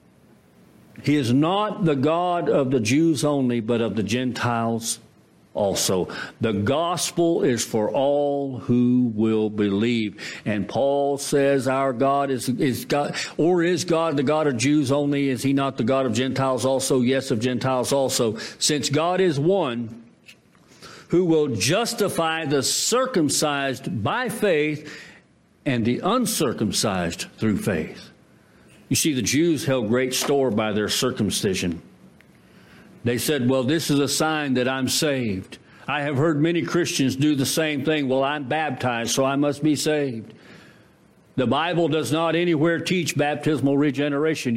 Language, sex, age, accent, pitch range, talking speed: English, male, 50-69, American, 130-160 Hz, 150 wpm